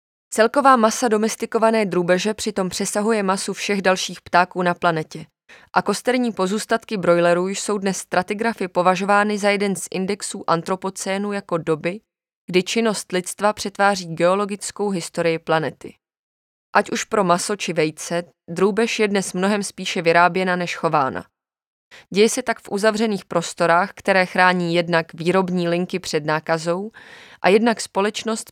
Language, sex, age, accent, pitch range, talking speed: Czech, female, 20-39, native, 175-210 Hz, 135 wpm